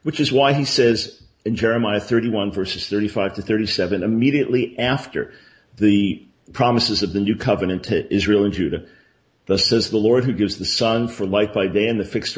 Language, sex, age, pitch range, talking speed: English, male, 50-69, 95-120 Hz, 190 wpm